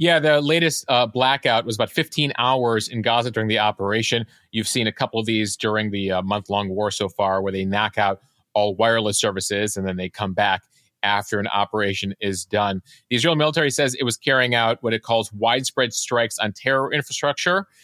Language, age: English, 30-49